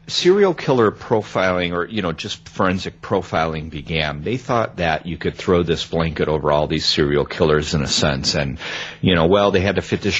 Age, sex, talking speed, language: 40-59, male, 205 wpm, English